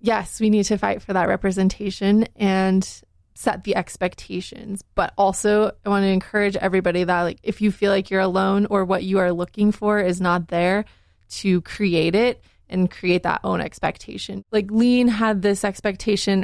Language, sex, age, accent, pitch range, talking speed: English, female, 20-39, American, 185-210 Hz, 180 wpm